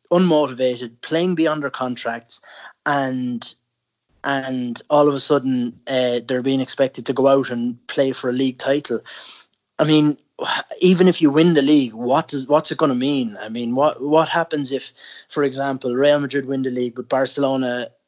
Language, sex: English, male